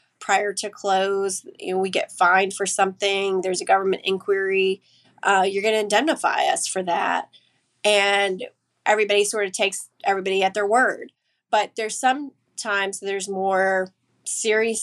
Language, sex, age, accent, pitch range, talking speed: English, female, 20-39, American, 185-205 Hz, 155 wpm